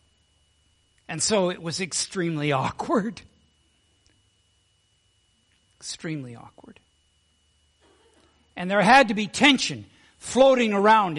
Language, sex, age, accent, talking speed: English, male, 60-79, American, 85 wpm